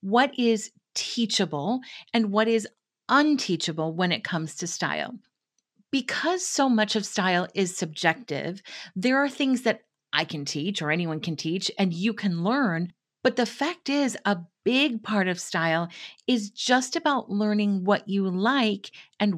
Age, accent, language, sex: 40-59, American, English, female